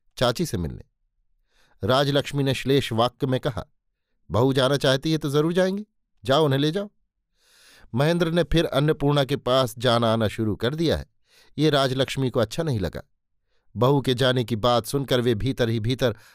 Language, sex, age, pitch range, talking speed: Hindi, male, 50-69, 115-145 Hz, 175 wpm